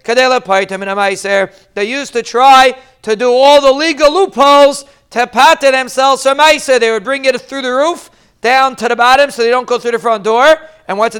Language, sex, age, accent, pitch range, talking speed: English, male, 40-59, American, 220-275 Hz, 190 wpm